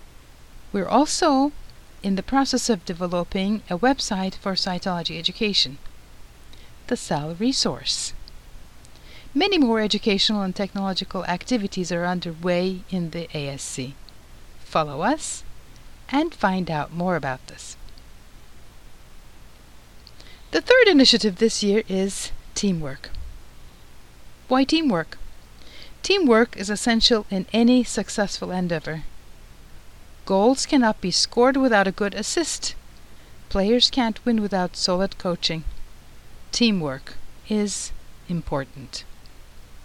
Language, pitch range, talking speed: English, 165-240 Hz, 100 wpm